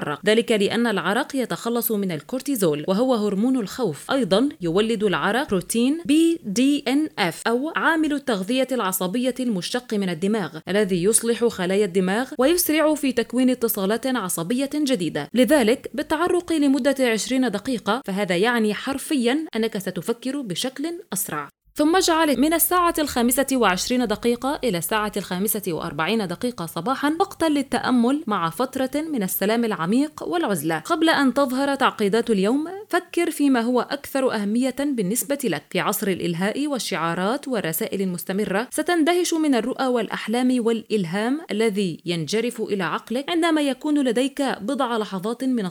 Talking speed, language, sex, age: 130 wpm, Arabic, female, 20-39